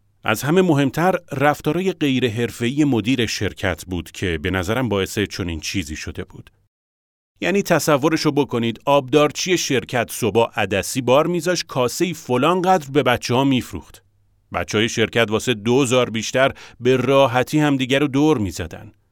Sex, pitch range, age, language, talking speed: male, 100-145 Hz, 40-59, Persian, 140 wpm